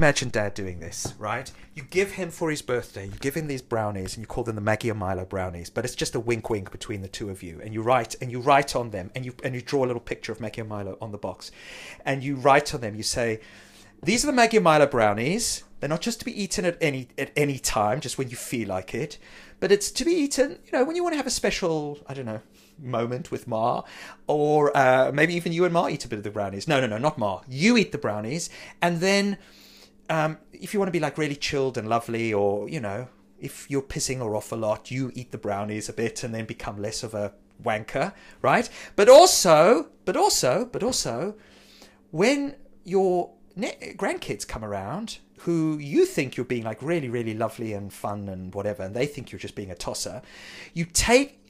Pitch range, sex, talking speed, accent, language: 110-175 Hz, male, 235 wpm, British, English